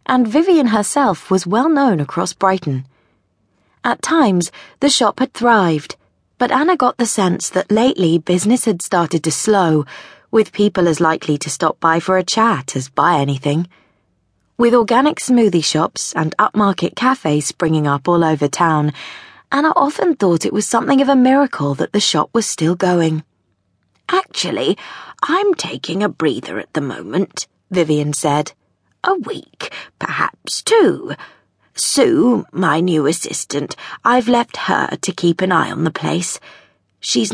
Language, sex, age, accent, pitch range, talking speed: English, female, 20-39, British, 165-230 Hz, 155 wpm